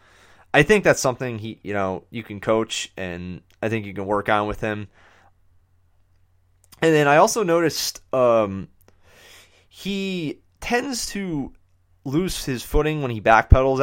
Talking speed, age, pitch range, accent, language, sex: 150 wpm, 30-49, 90-120 Hz, American, English, male